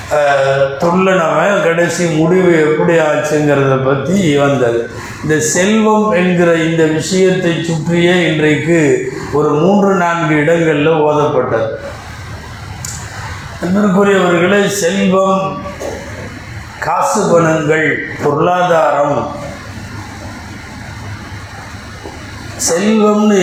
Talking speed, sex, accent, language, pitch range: 60 wpm, male, native, Tamil, 130-180 Hz